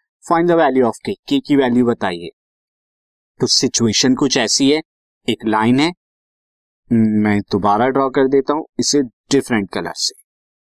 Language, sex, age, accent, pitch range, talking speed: Hindi, male, 20-39, native, 130-190 Hz, 145 wpm